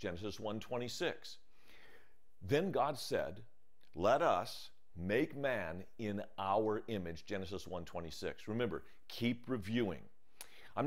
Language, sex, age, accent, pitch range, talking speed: English, male, 40-59, American, 90-120 Hz, 100 wpm